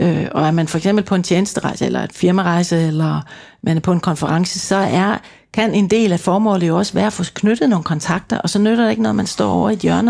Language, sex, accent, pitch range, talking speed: Danish, female, native, 180-225 Hz, 260 wpm